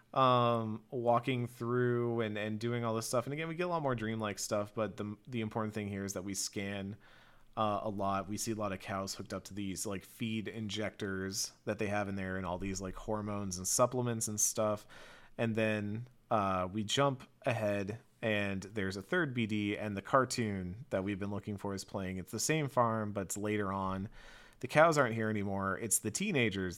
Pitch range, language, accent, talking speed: 100-120 Hz, English, American, 215 wpm